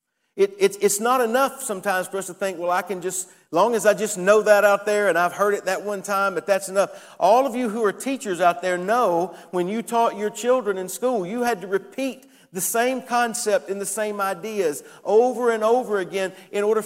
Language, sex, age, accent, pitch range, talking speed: English, male, 50-69, American, 195-240 Hz, 230 wpm